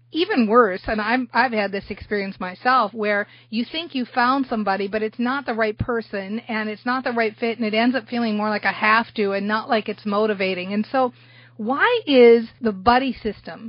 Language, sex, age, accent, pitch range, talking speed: English, female, 40-59, American, 215-265 Hz, 215 wpm